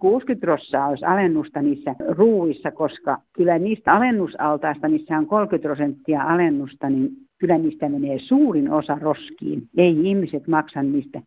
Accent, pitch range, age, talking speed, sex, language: native, 150-205 Hz, 60-79, 130 wpm, female, Finnish